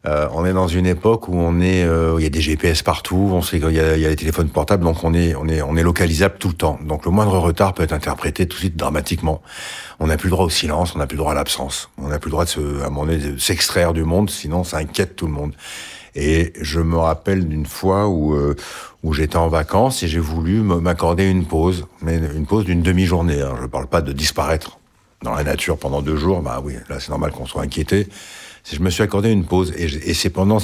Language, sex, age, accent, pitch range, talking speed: French, male, 60-79, French, 80-95 Hz, 260 wpm